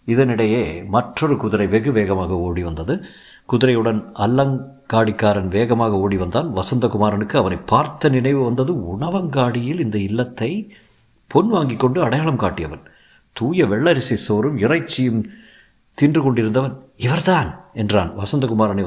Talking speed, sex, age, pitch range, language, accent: 110 wpm, male, 50-69, 110-150 Hz, Tamil, native